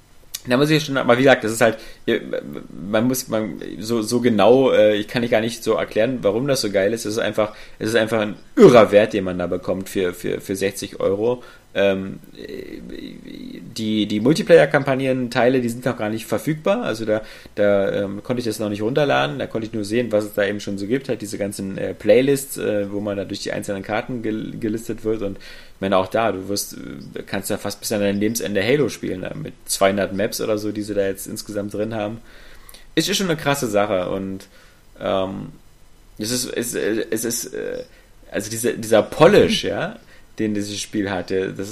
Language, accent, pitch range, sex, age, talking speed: German, German, 100-125 Hz, male, 30-49, 195 wpm